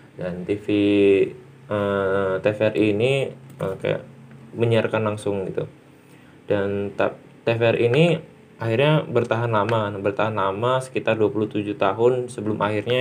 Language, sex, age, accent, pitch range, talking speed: Indonesian, male, 20-39, native, 100-125 Hz, 105 wpm